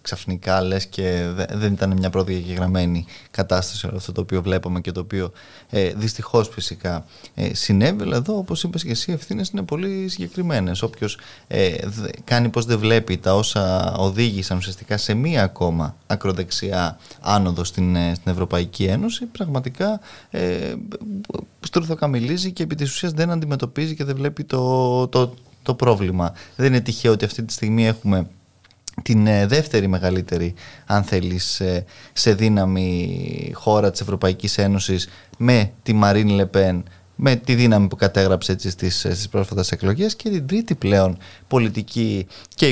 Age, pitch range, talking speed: 20-39, 95-130 Hz, 145 wpm